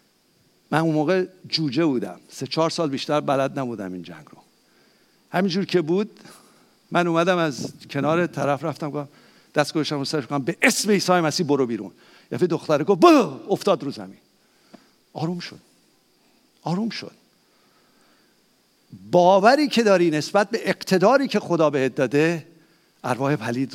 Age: 50-69